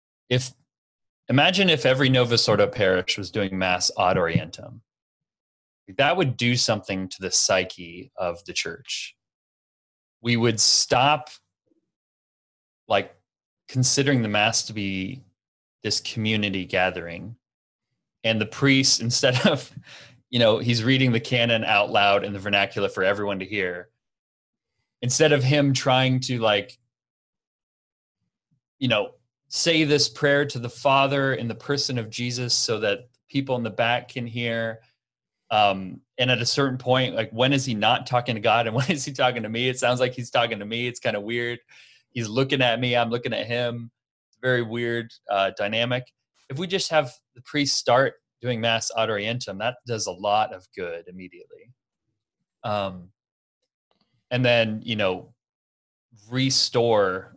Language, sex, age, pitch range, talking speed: English, male, 30-49, 110-130 Hz, 160 wpm